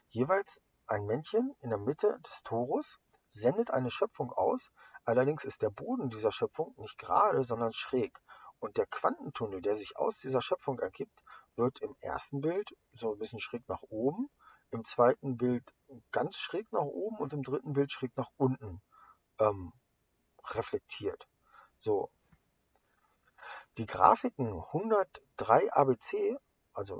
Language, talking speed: English, 140 wpm